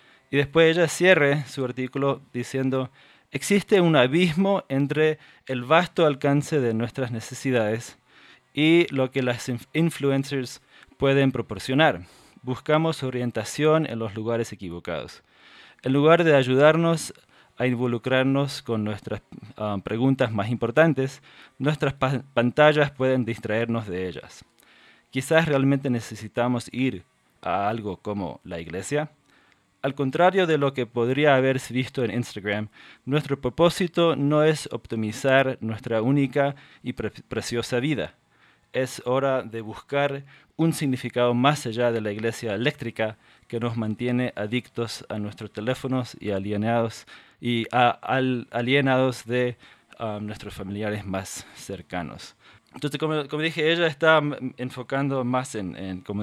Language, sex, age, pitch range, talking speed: Spanish, male, 20-39, 115-145 Hz, 130 wpm